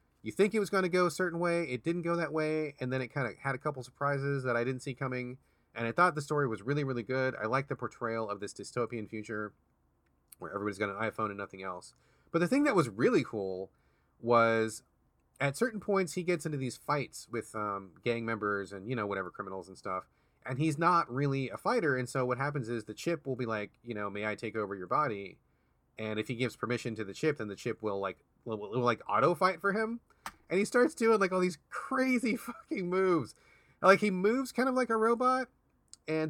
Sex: male